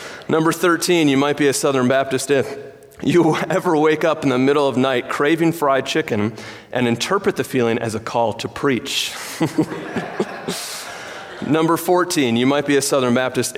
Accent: American